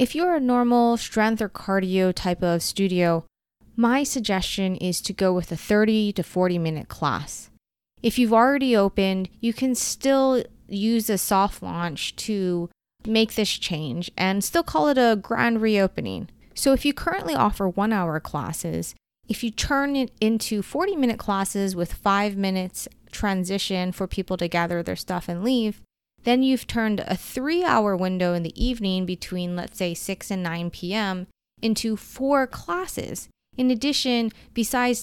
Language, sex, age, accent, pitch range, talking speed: English, female, 20-39, American, 185-245 Hz, 165 wpm